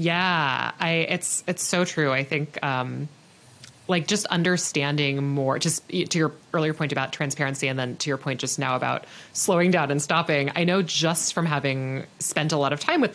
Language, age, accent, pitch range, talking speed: English, 30-49, American, 140-175 Hz, 195 wpm